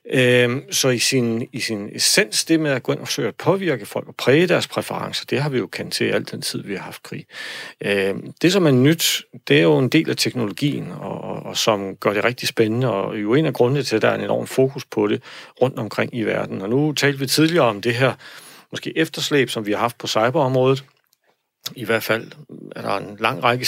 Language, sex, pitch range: Danish, male, 115-145 Hz